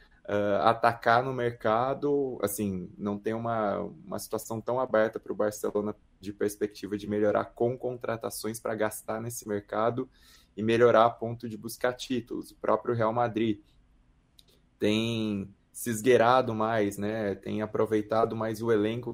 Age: 20-39